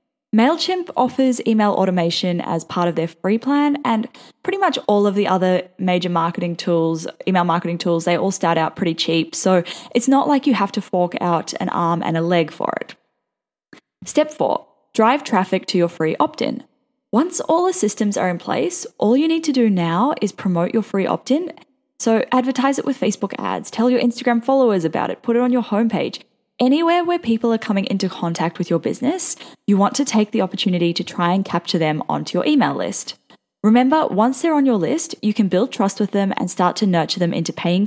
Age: 10-29